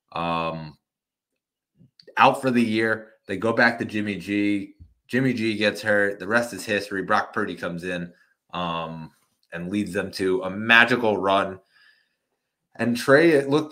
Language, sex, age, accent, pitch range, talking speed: English, male, 20-39, American, 105-130 Hz, 155 wpm